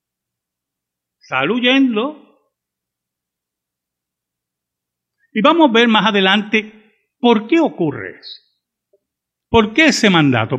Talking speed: 90 wpm